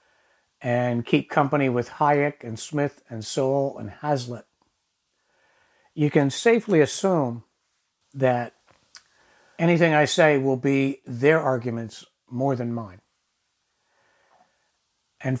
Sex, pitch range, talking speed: male, 130-170 Hz, 105 wpm